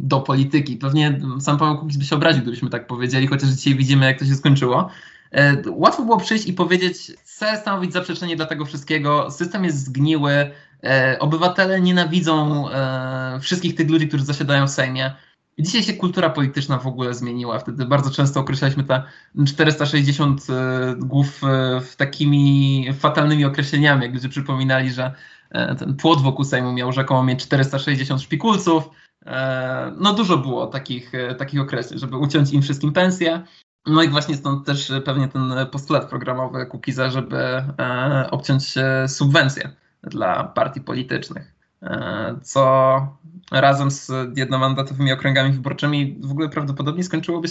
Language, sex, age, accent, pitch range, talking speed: Polish, male, 20-39, native, 130-155 Hz, 140 wpm